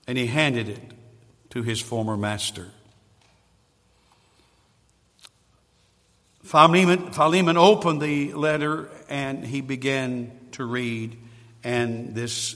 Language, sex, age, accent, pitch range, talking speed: English, male, 60-79, American, 115-150 Hz, 90 wpm